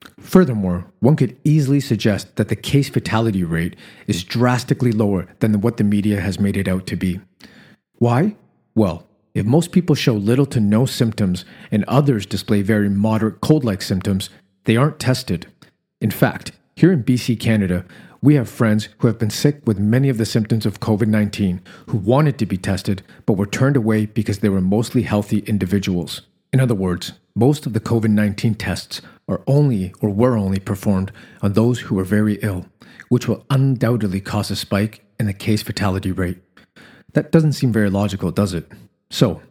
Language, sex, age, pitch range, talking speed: English, male, 40-59, 100-125 Hz, 180 wpm